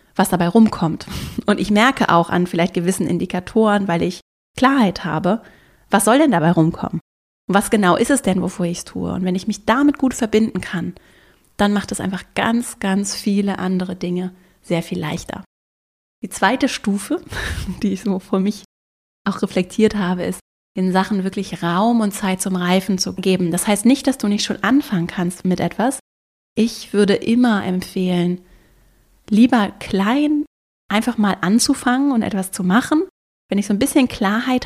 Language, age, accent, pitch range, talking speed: German, 30-49, German, 185-230 Hz, 175 wpm